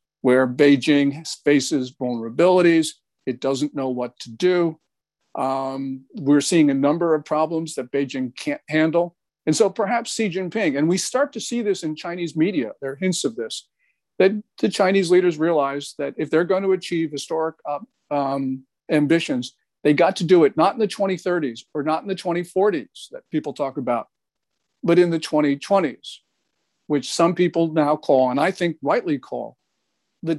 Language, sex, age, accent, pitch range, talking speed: English, male, 50-69, American, 145-190 Hz, 170 wpm